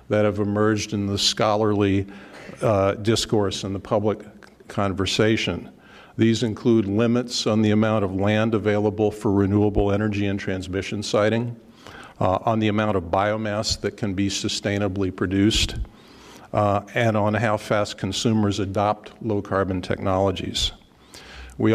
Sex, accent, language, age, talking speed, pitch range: male, American, English, 50-69, 130 wpm, 95-110 Hz